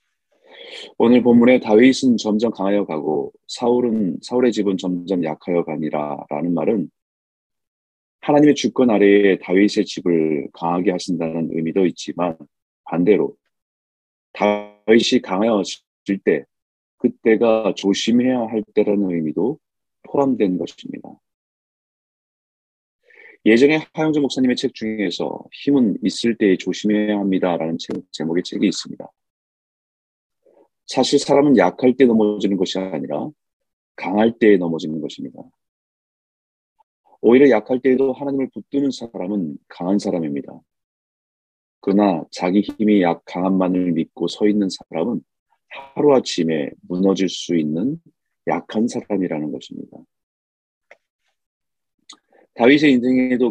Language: Korean